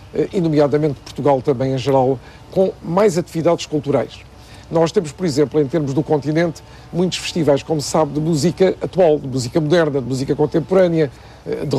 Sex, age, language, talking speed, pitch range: male, 50-69, Portuguese, 170 wpm, 145-180 Hz